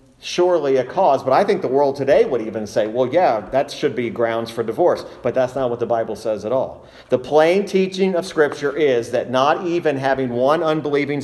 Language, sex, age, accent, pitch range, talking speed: English, male, 40-59, American, 115-150 Hz, 220 wpm